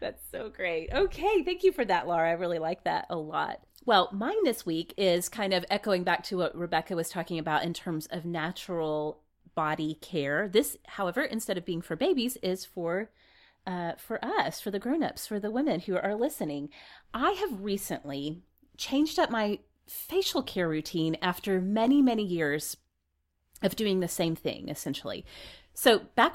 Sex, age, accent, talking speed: female, 30-49, American, 180 wpm